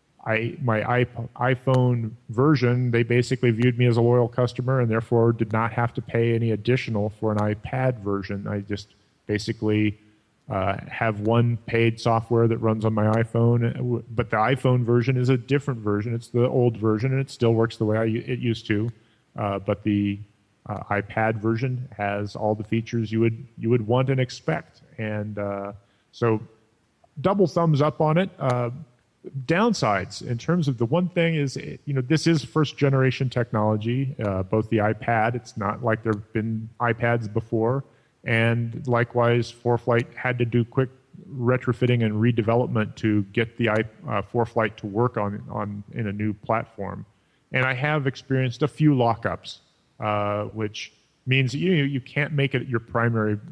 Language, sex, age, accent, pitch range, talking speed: English, male, 30-49, American, 110-130 Hz, 170 wpm